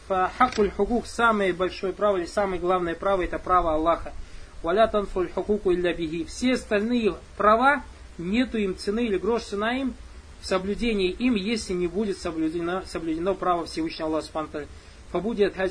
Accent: native